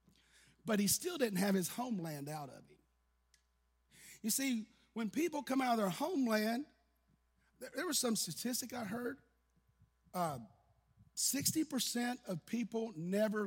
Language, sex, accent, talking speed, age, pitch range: English, male, American, 135 wpm, 40-59, 180-245 Hz